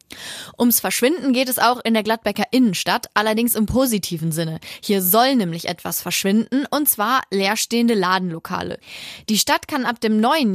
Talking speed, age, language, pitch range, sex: 160 wpm, 20-39, German, 200-255 Hz, female